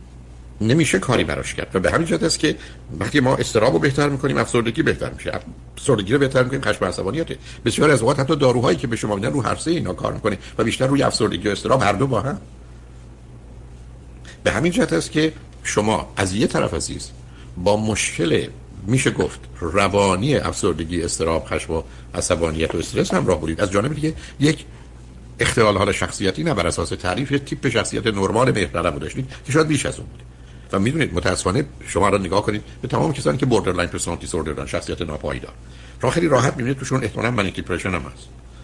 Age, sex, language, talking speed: 60-79, male, Persian, 185 wpm